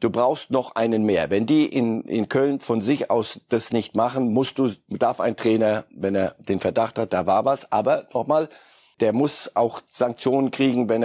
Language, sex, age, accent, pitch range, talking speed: German, male, 60-79, German, 105-130 Hz, 200 wpm